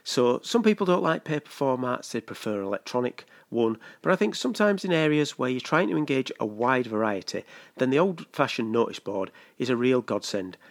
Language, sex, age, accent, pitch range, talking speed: English, male, 40-59, British, 110-150 Hz, 190 wpm